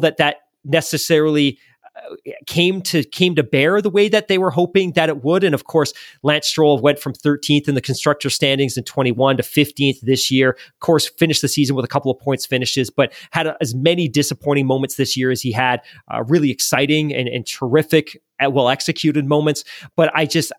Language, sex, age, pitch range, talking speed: English, male, 30-49, 135-160 Hz, 205 wpm